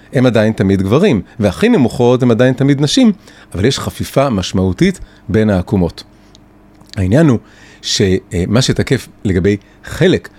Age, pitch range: 30-49, 100-130 Hz